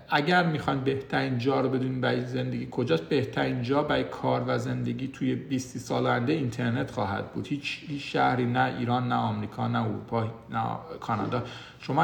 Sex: male